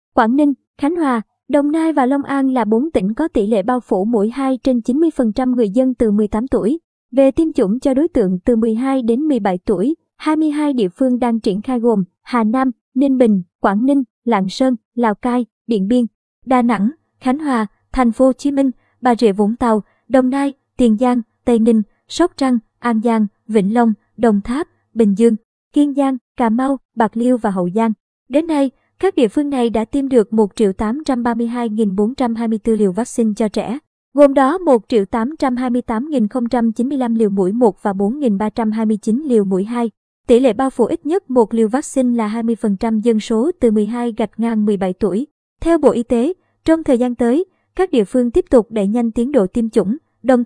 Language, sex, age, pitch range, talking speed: Vietnamese, male, 20-39, 225-265 Hz, 190 wpm